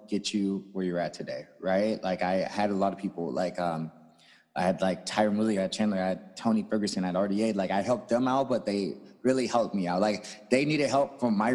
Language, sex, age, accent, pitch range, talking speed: English, male, 30-49, American, 90-110 Hz, 250 wpm